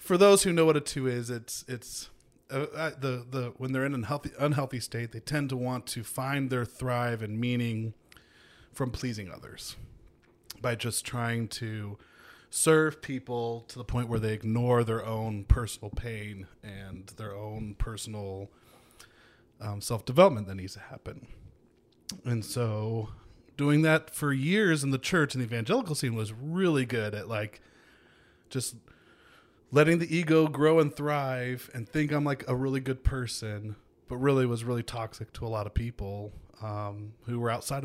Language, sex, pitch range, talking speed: English, male, 110-135 Hz, 170 wpm